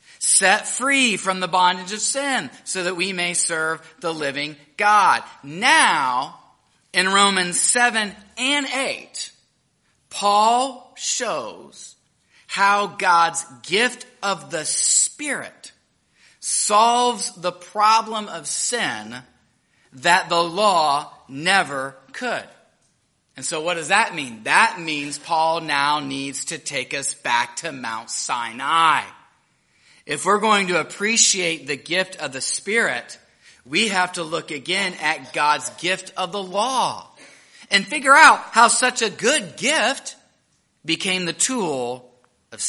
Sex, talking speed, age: male, 125 wpm, 30-49